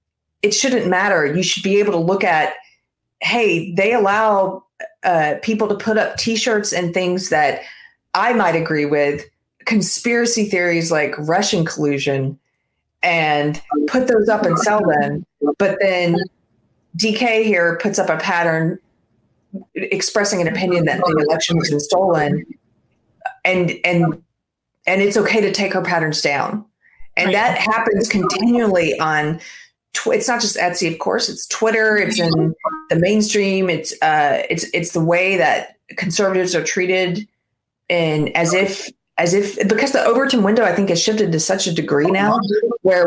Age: 30-49